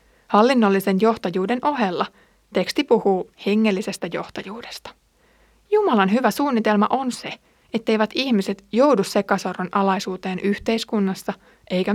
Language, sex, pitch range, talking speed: Finnish, female, 195-240 Hz, 95 wpm